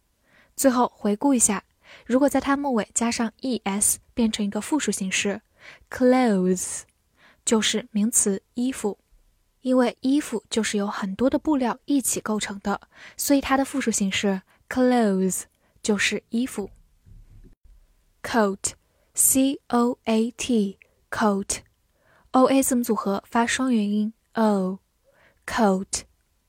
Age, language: 10-29, Chinese